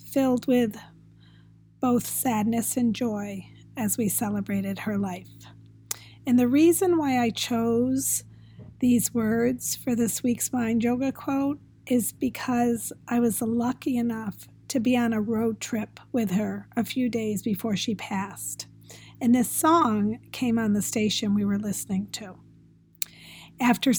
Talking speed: 145 wpm